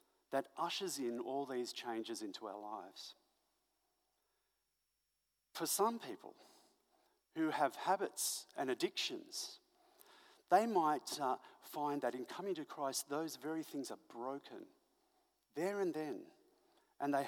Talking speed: 125 wpm